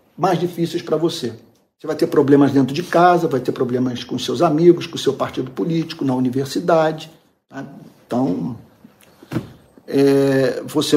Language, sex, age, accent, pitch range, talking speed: Portuguese, male, 50-69, Brazilian, 130-175 Hz, 150 wpm